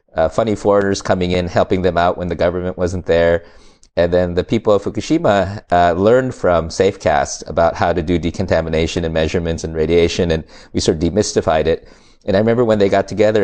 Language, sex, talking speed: English, male, 200 wpm